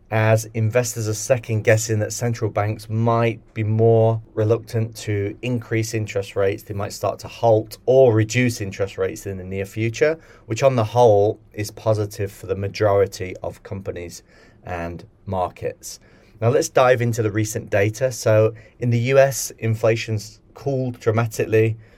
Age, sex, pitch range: 30-49, male, 105-115 Hz